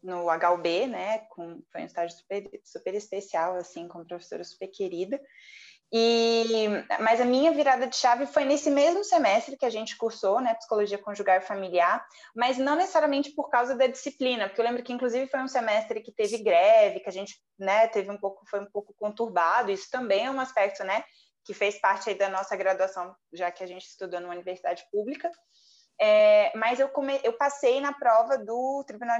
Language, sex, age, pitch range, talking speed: Portuguese, female, 20-39, 195-275 Hz, 190 wpm